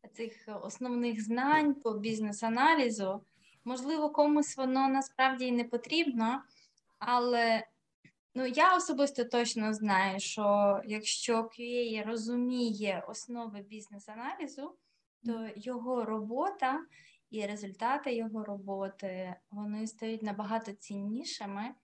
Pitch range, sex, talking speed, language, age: 210-250 Hz, female, 95 wpm, Ukrainian, 20-39